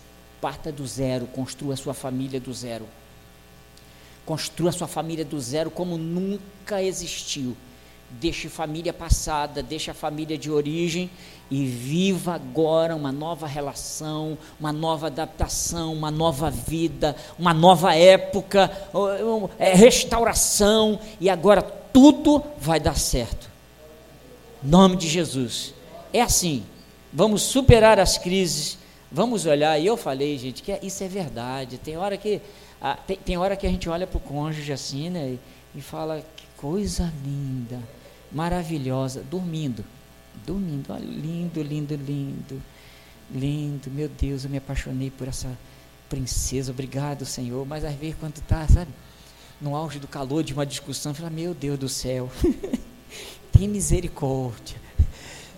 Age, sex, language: 50-69, male, Portuguese